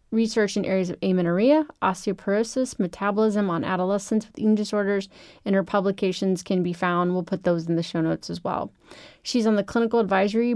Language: English